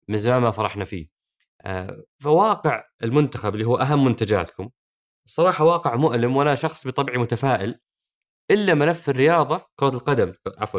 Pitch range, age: 115-160 Hz, 20-39